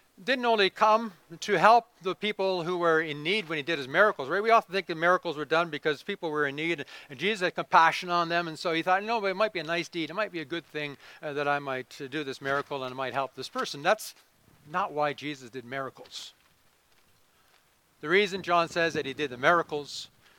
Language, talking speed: English, 235 wpm